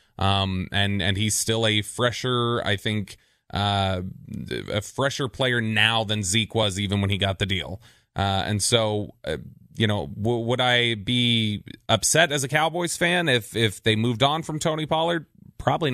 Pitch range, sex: 105-120 Hz, male